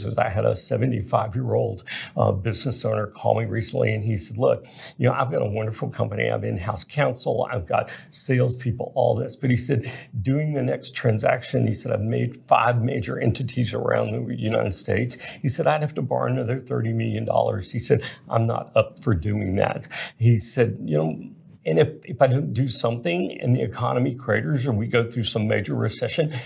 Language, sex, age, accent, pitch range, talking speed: English, male, 60-79, American, 110-130 Hz, 195 wpm